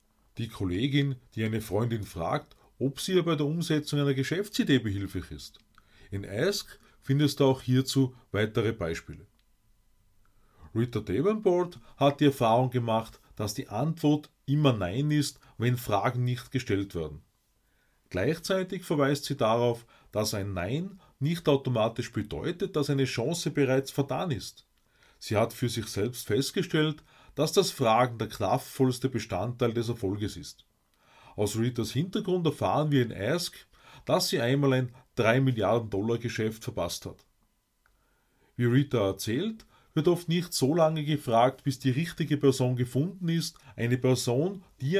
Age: 30-49